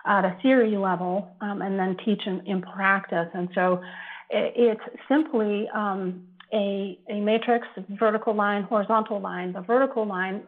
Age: 40-59